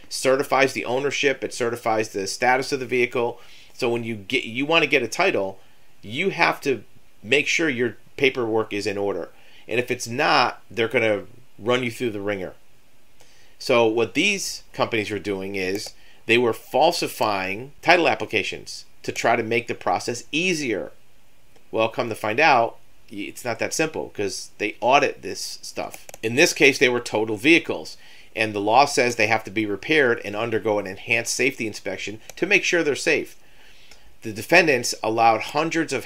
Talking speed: 175 wpm